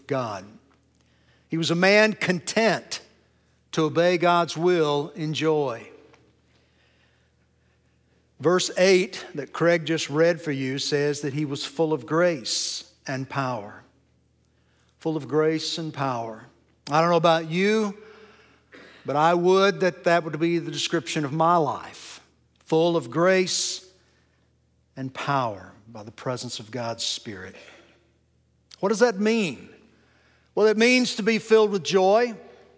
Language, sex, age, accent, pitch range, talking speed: English, male, 60-79, American, 130-190 Hz, 135 wpm